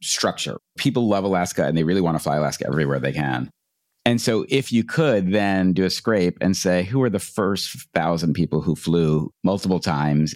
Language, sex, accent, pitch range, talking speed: English, male, American, 85-105 Hz, 205 wpm